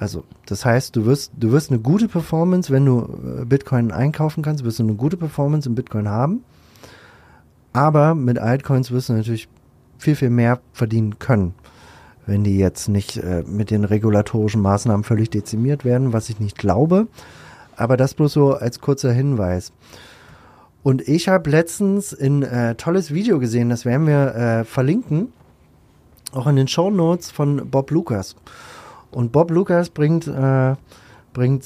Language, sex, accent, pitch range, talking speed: German, male, German, 110-140 Hz, 155 wpm